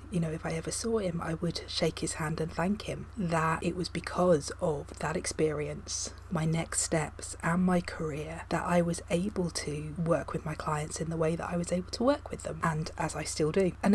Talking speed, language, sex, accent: 230 wpm, English, female, British